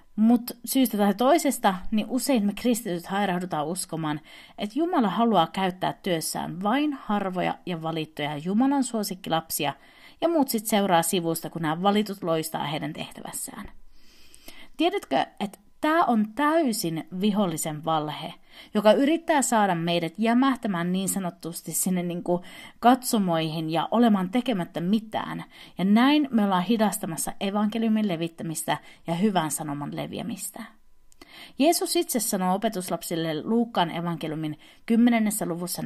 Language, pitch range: Finnish, 170-250 Hz